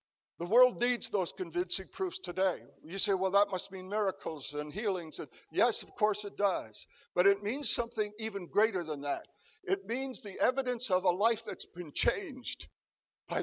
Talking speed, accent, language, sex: 185 wpm, American, English, male